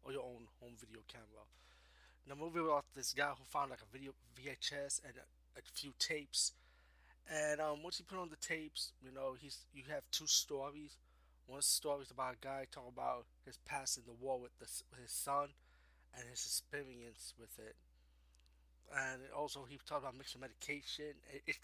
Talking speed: 185 wpm